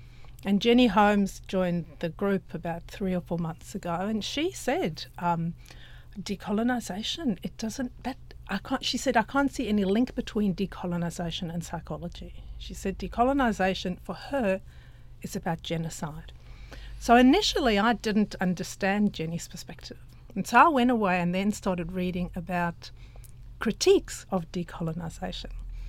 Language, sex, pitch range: English, female, 165-205 Hz